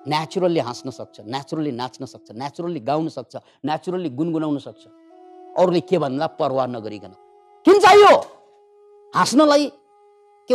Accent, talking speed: Indian, 160 wpm